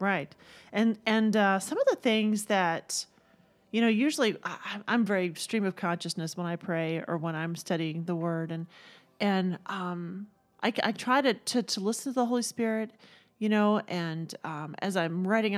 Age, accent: 40-59, American